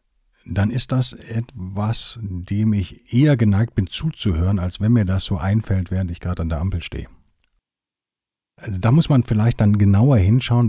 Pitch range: 90-115 Hz